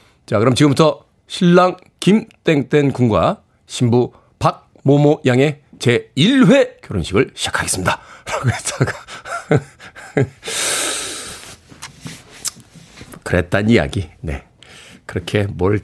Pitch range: 115-150 Hz